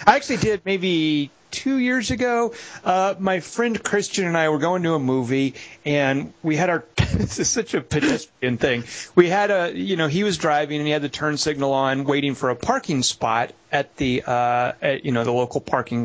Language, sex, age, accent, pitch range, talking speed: English, male, 40-59, American, 130-190 Hz, 210 wpm